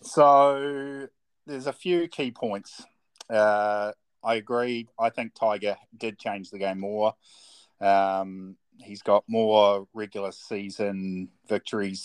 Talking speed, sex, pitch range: 120 wpm, male, 100-120 Hz